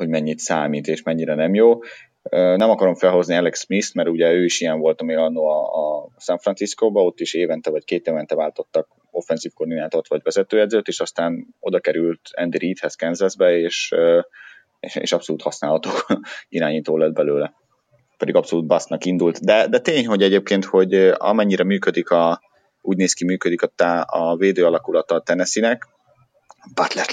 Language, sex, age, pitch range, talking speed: Hungarian, male, 30-49, 85-110 Hz, 160 wpm